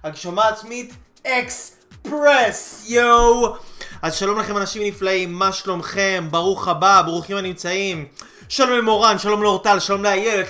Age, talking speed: 20-39, 125 wpm